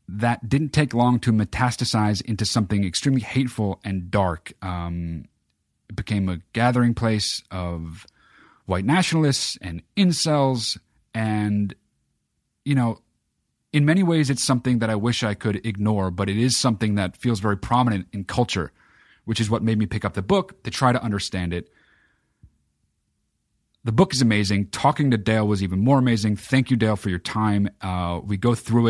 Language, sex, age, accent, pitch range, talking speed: English, male, 30-49, American, 95-125 Hz, 170 wpm